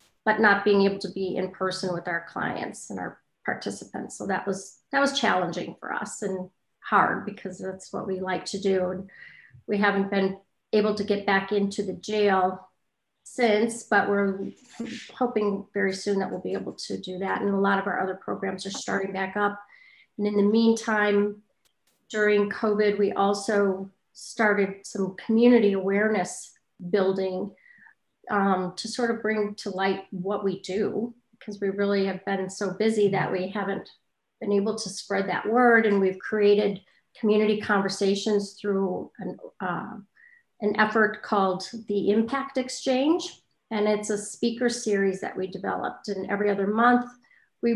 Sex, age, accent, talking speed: female, 40-59, American, 165 wpm